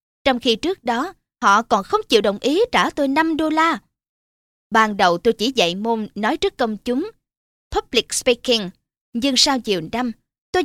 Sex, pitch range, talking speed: female, 205-300 Hz, 180 wpm